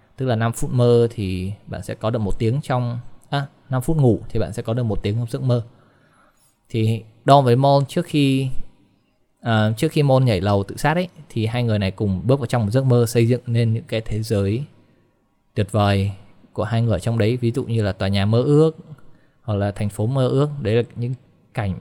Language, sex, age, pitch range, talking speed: Vietnamese, male, 20-39, 110-130 Hz, 235 wpm